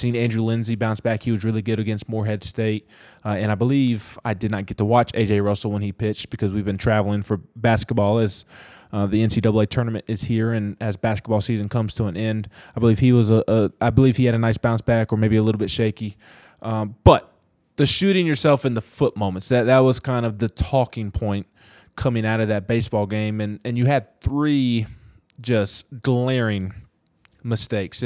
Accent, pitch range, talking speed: American, 105-120 Hz, 210 wpm